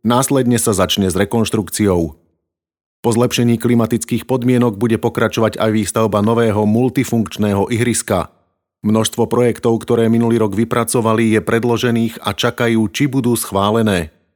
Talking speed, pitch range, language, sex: 120 wpm, 105-120 Hz, Slovak, male